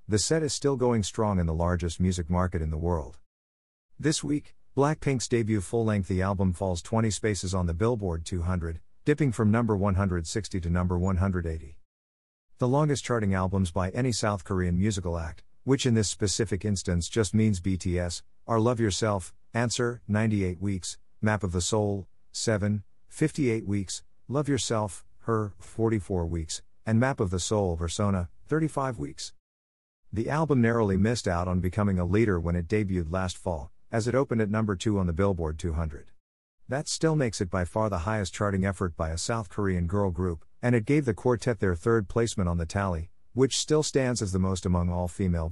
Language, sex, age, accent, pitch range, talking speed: English, male, 50-69, American, 85-115 Hz, 180 wpm